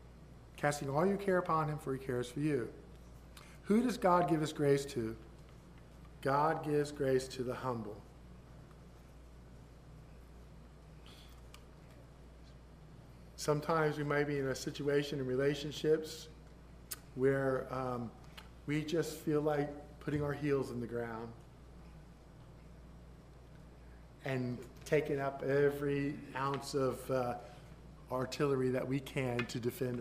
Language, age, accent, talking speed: English, 50-69, American, 115 wpm